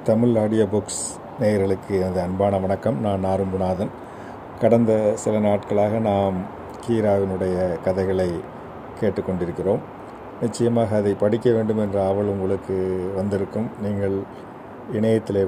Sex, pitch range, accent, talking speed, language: male, 95-110 Hz, native, 95 wpm, Tamil